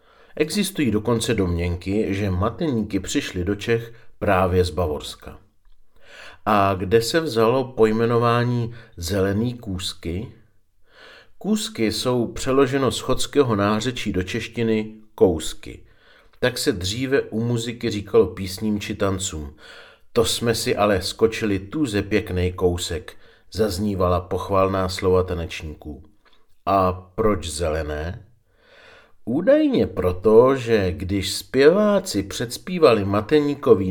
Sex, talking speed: male, 105 wpm